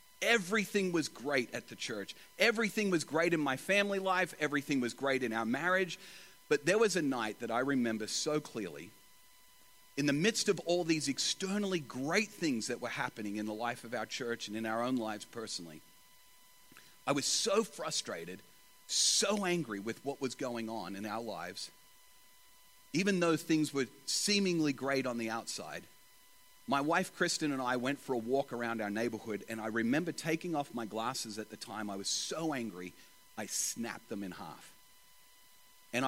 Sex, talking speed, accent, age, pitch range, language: male, 180 wpm, American, 40-59, 115-170 Hz, English